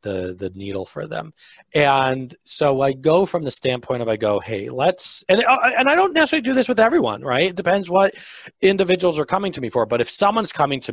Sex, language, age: male, English, 40-59